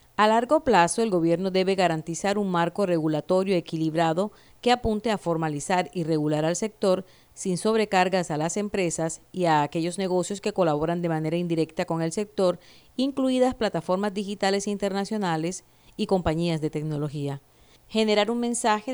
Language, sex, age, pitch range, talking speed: Spanish, female, 40-59, 160-200 Hz, 150 wpm